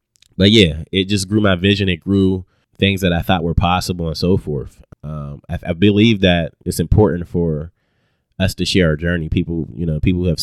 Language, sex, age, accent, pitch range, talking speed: English, male, 30-49, American, 75-90 Hz, 215 wpm